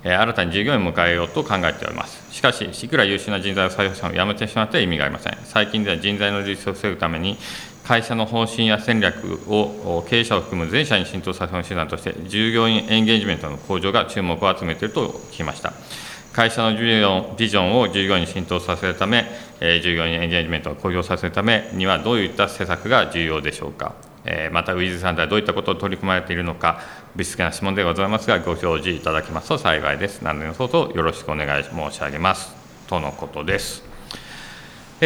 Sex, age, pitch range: male, 40-59, 85-110 Hz